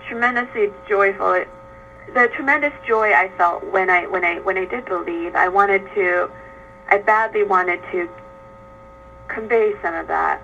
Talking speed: 155 wpm